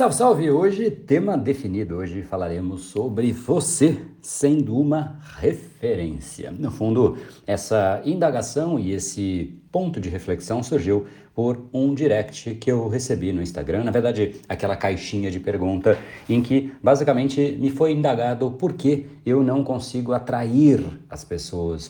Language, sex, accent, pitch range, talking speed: Portuguese, male, Brazilian, 95-145 Hz, 135 wpm